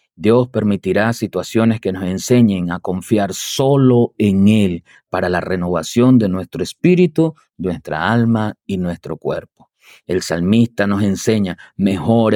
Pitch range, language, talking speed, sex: 95-120 Hz, Spanish, 130 wpm, male